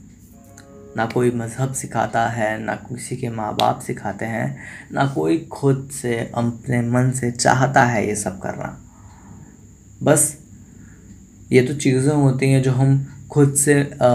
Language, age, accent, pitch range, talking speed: Hindi, 20-39, native, 110-130 Hz, 145 wpm